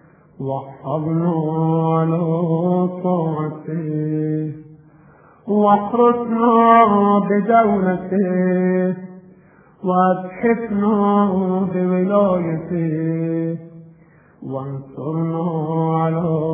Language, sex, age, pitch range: Persian, male, 30-49, 165-230 Hz